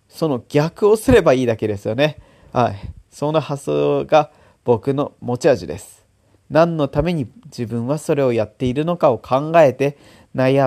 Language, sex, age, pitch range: Japanese, male, 40-59, 115-160 Hz